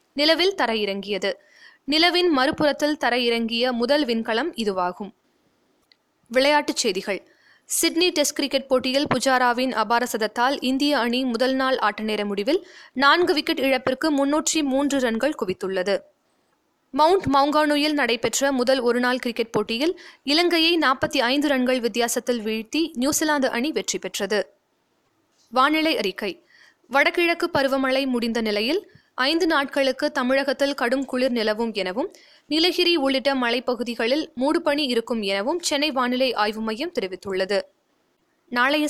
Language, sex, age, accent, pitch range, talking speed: Tamil, female, 20-39, native, 235-305 Hz, 110 wpm